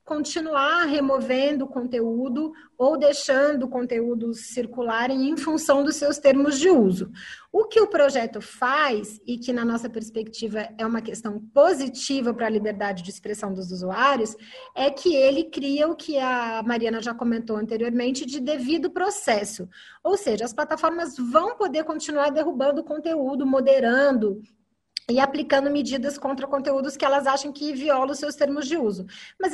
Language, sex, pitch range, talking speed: Portuguese, female, 235-305 Hz, 155 wpm